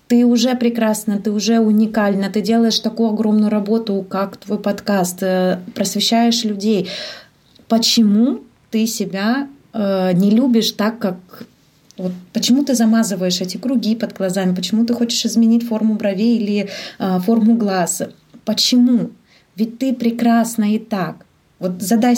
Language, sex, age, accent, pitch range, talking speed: Russian, female, 20-39, native, 185-225 Hz, 125 wpm